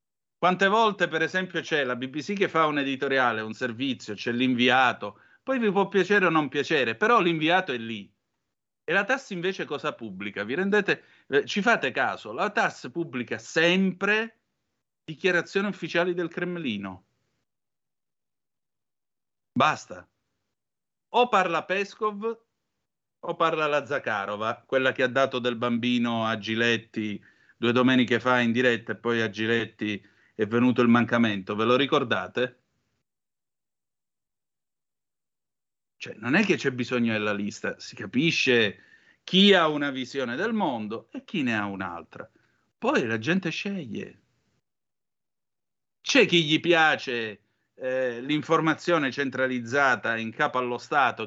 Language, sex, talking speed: Italian, male, 135 wpm